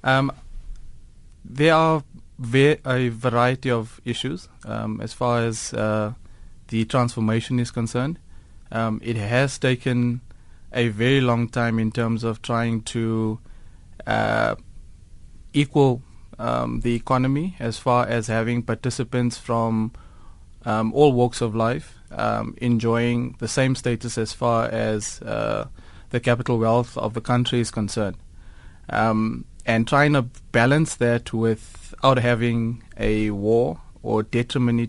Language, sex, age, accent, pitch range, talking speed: Dutch, male, 20-39, South African, 110-125 Hz, 130 wpm